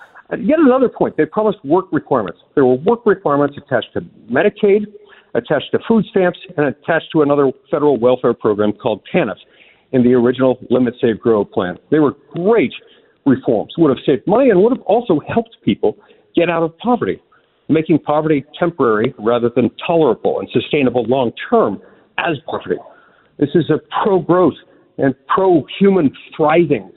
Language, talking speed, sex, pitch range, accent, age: English, 155 wpm, male, 150-225 Hz, American, 50-69